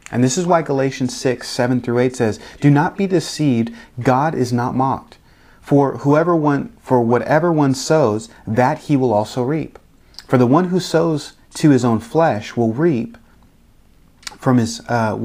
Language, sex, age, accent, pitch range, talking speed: English, male, 30-49, American, 105-135 Hz, 175 wpm